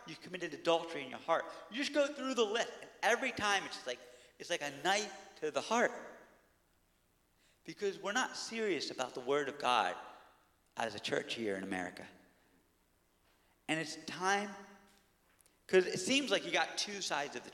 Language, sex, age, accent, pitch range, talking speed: English, male, 40-59, American, 145-235 Hz, 180 wpm